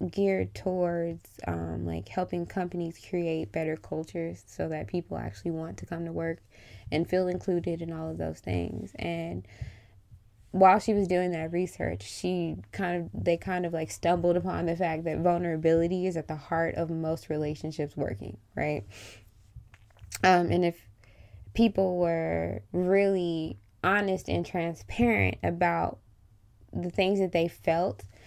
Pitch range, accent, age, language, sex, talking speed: 105-175 Hz, American, 20-39, English, female, 150 wpm